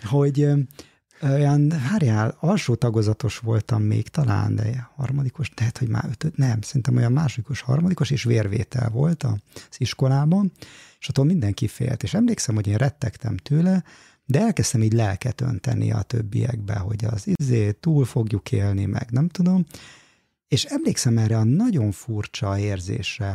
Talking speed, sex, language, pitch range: 150 wpm, male, Hungarian, 105-140 Hz